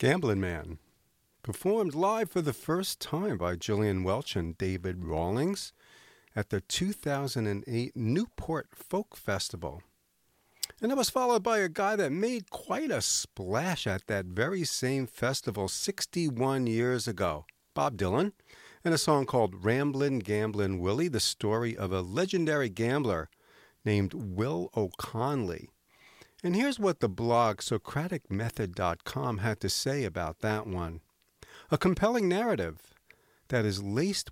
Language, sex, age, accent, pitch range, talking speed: English, male, 50-69, American, 105-165 Hz, 135 wpm